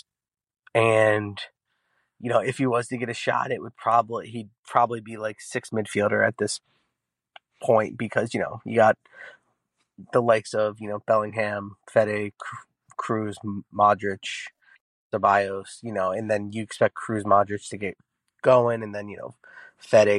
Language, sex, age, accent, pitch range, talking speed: English, male, 30-49, American, 100-120 Hz, 160 wpm